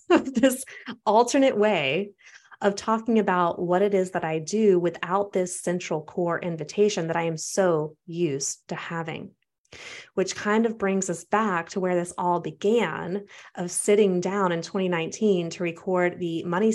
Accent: American